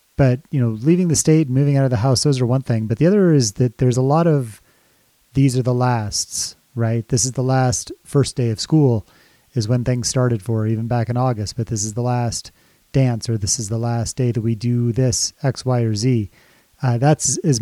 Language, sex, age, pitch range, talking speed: English, male, 30-49, 115-140 Hz, 235 wpm